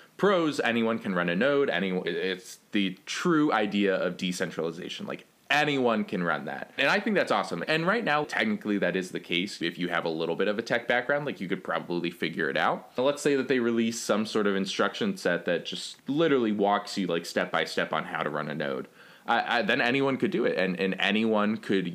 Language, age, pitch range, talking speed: English, 20-39, 90-120 Hz, 225 wpm